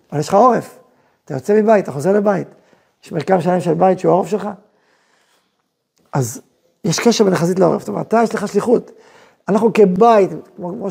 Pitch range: 175-225 Hz